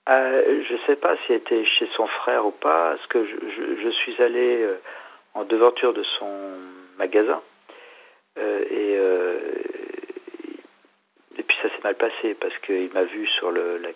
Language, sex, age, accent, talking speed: French, male, 50-69, French, 185 wpm